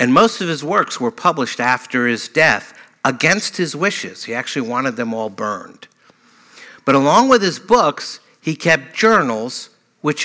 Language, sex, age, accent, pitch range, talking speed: English, male, 60-79, American, 140-200 Hz, 165 wpm